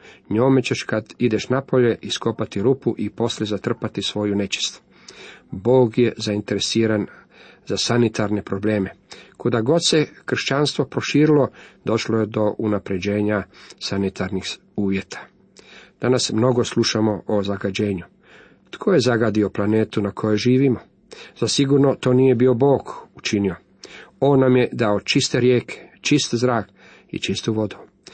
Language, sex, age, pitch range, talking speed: Croatian, male, 40-59, 105-125 Hz, 125 wpm